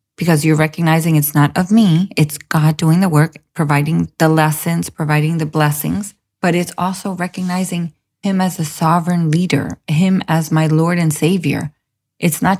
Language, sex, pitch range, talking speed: English, female, 150-190 Hz, 165 wpm